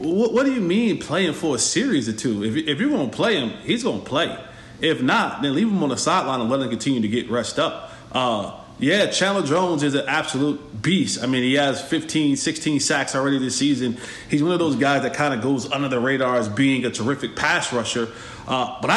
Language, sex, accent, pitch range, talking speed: English, male, American, 135-175 Hz, 235 wpm